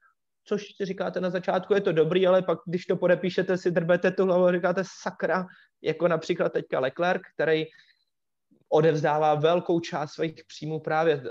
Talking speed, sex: 160 wpm, male